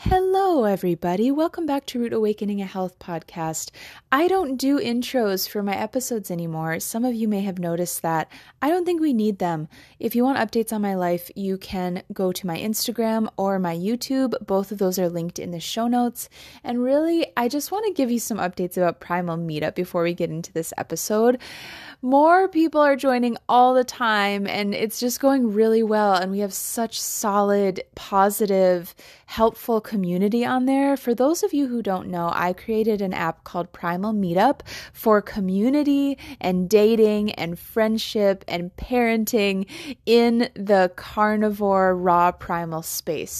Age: 20-39